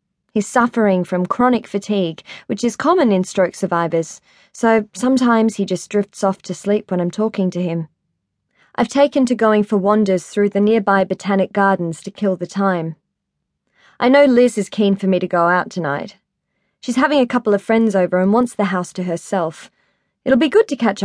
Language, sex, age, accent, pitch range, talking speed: English, female, 20-39, Australian, 185-230 Hz, 195 wpm